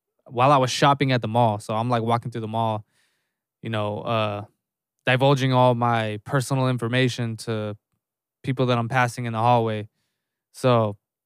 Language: English